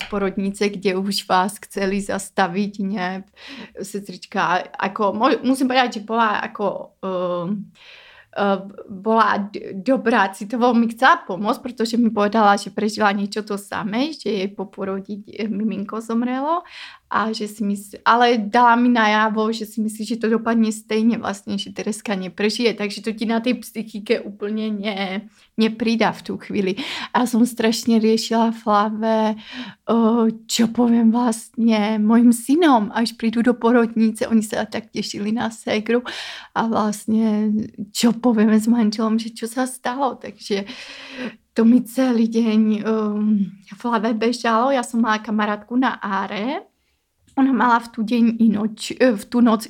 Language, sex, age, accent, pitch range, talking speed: Czech, female, 30-49, native, 205-235 Hz, 140 wpm